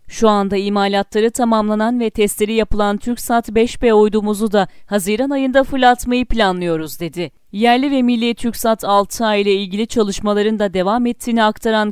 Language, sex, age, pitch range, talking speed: Turkish, female, 40-59, 195-240 Hz, 140 wpm